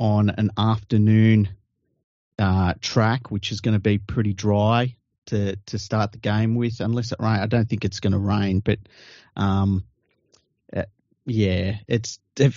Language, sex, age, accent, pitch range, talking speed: English, male, 30-49, Australian, 100-120 Hz, 160 wpm